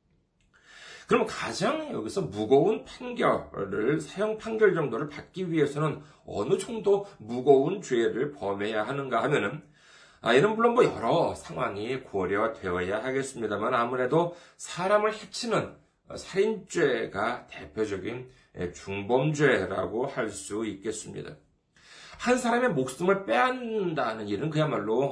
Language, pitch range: Korean, 130-210 Hz